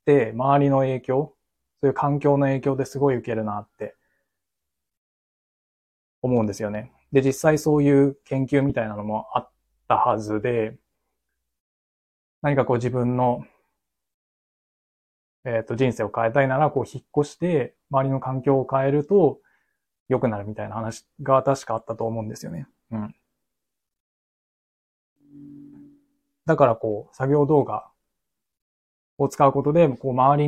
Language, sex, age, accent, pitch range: Japanese, male, 20-39, native, 115-145 Hz